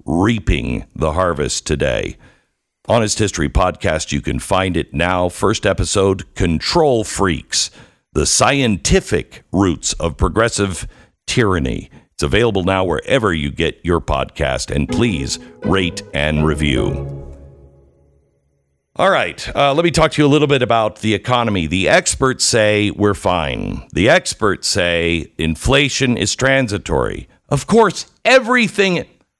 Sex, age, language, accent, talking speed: male, 50-69, English, American, 130 wpm